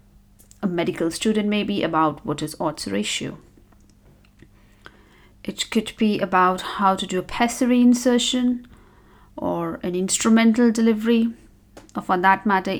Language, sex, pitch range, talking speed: English, female, 155-215 Hz, 125 wpm